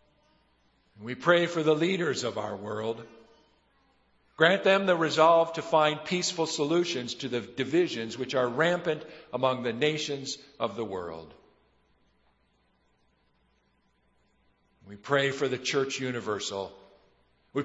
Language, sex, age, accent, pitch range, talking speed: English, male, 50-69, American, 120-160 Hz, 120 wpm